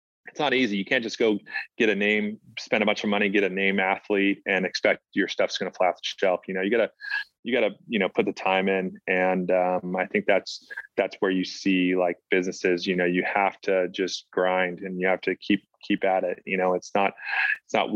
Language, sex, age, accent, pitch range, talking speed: English, male, 20-39, American, 95-105 Hz, 245 wpm